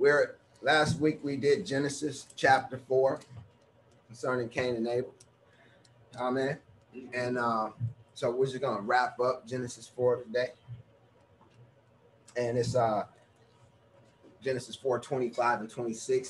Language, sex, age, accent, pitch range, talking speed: English, male, 30-49, American, 115-140 Hz, 120 wpm